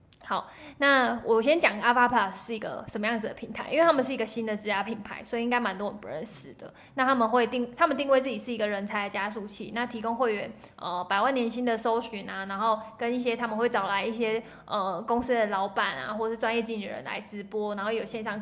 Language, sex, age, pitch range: Chinese, female, 20-39, 210-240 Hz